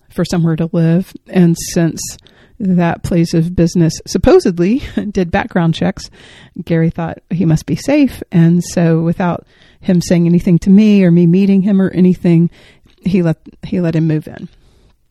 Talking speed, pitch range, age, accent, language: 165 wpm, 160-185 Hz, 40-59, American, English